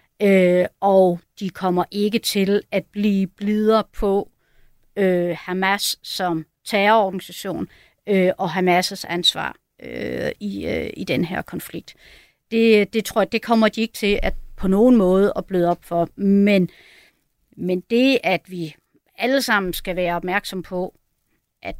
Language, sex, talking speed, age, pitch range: Danish, female, 150 wpm, 60-79, 185-225 Hz